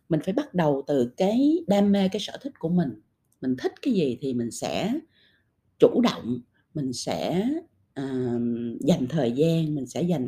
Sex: female